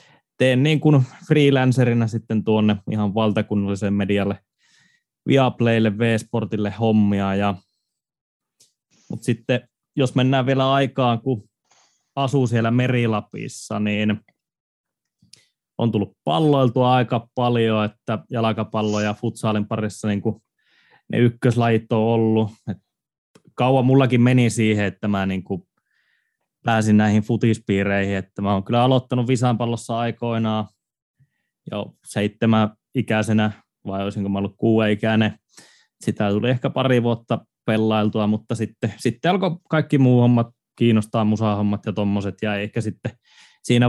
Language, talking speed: Finnish, 120 wpm